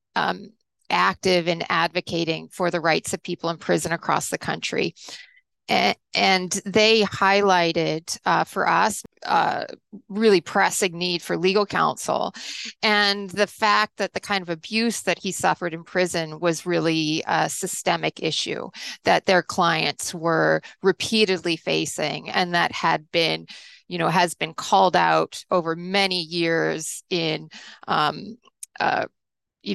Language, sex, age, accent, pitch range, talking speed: English, female, 30-49, American, 165-195 Hz, 140 wpm